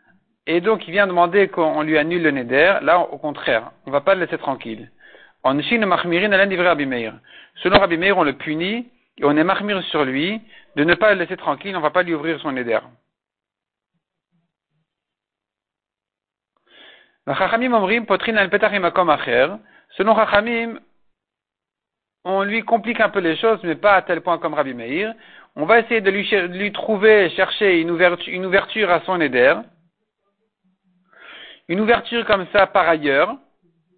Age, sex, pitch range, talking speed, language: 50-69, male, 160-205 Hz, 155 wpm, French